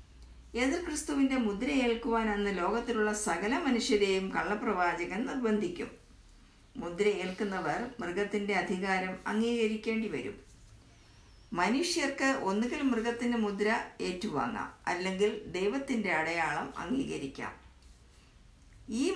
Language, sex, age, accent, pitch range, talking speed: Malayalam, female, 50-69, native, 185-240 Hz, 75 wpm